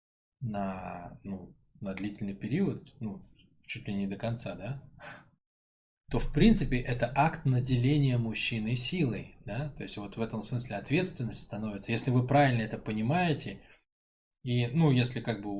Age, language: 20-39, Russian